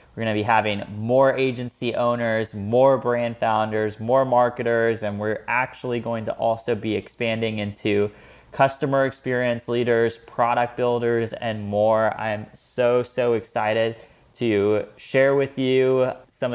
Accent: American